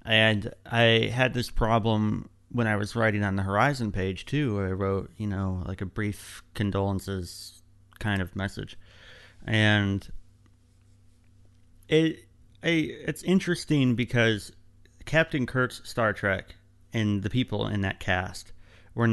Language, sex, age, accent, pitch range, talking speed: English, male, 30-49, American, 95-115 Hz, 130 wpm